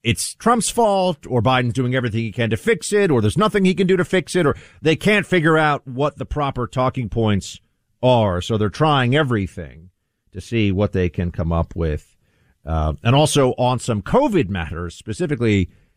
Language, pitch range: English, 95-130 Hz